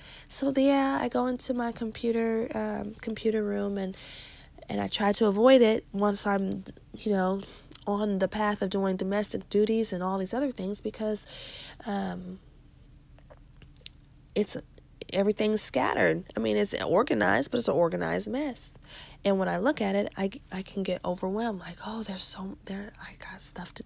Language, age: English, 40-59